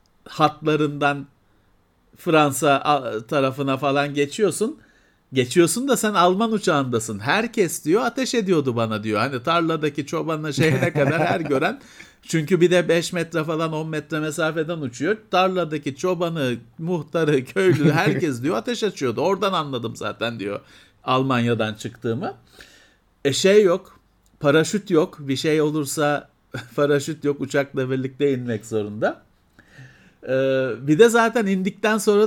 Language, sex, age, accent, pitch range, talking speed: Turkish, male, 50-69, native, 130-175 Hz, 125 wpm